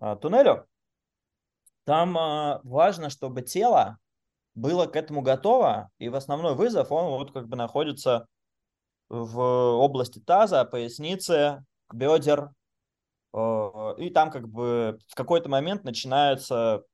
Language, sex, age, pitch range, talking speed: Russian, male, 20-39, 120-150 Hz, 110 wpm